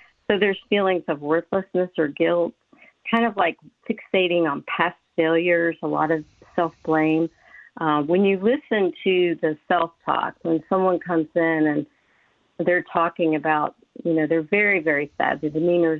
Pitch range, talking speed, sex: 155-185 Hz, 155 wpm, female